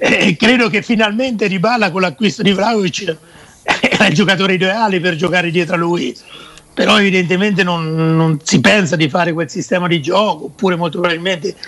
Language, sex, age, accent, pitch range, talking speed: Italian, male, 60-79, native, 170-200 Hz, 175 wpm